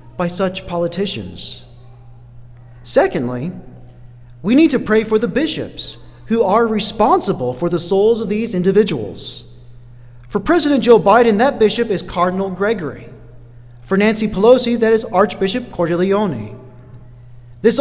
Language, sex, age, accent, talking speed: English, male, 40-59, American, 125 wpm